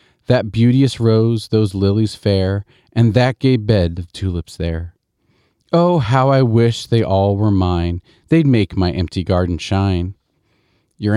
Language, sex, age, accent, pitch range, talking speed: English, male, 40-59, American, 95-125 Hz, 150 wpm